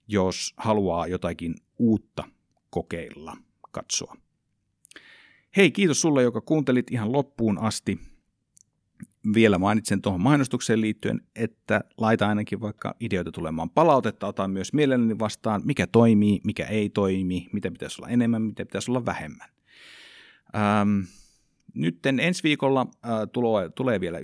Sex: male